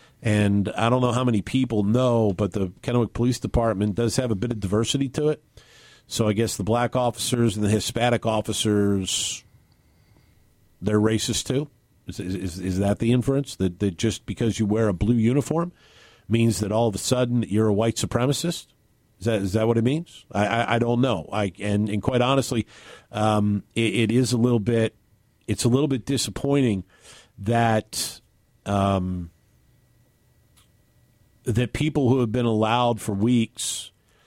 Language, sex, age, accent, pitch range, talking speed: English, male, 50-69, American, 105-120 Hz, 170 wpm